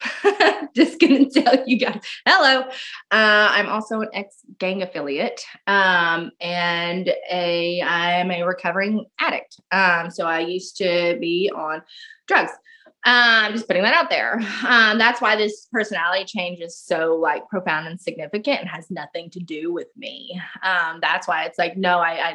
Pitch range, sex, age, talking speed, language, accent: 175-215 Hz, female, 20-39, 165 wpm, English, American